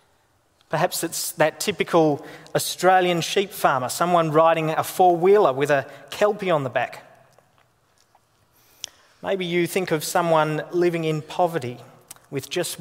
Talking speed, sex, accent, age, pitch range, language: 125 wpm, male, Australian, 30-49, 150-195 Hz, English